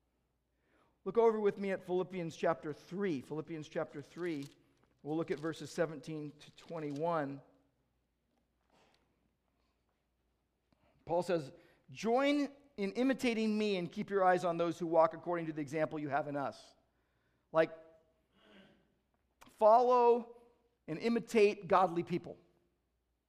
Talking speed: 120 wpm